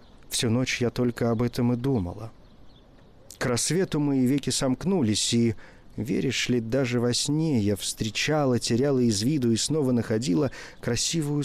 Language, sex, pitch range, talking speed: Russian, male, 105-130 Hz, 145 wpm